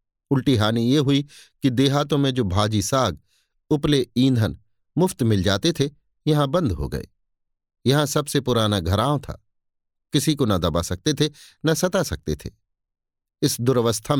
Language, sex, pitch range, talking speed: Hindi, male, 100-140 Hz, 155 wpm